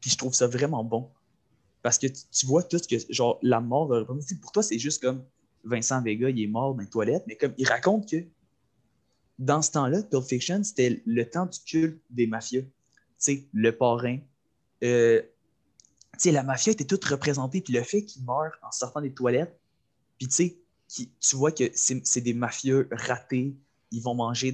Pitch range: 120-145 Hz